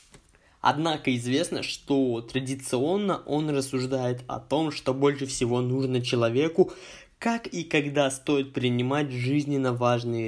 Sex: male